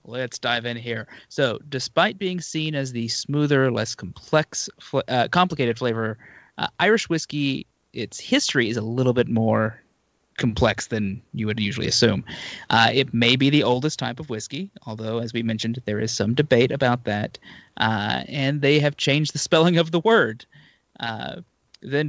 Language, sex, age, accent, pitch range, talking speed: English, male, 30-49, American, 115-155 Hz, 170 wpm